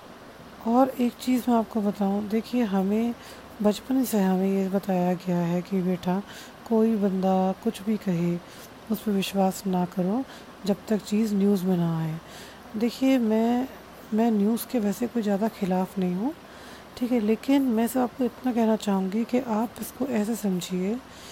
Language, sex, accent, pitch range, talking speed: Hindi, female, native, 195-235 Hz, 165 wpm